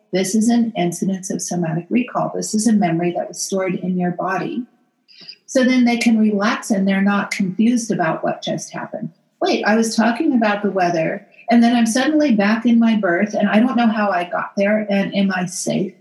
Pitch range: 185-225 Hz